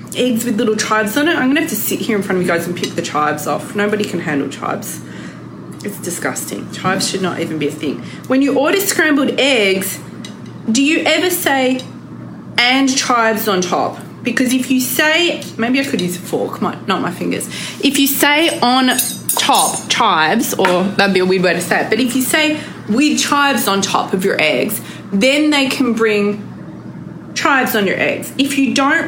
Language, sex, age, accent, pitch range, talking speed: English, female, 20-39, Australian, 200-275 Hz, 200 wpm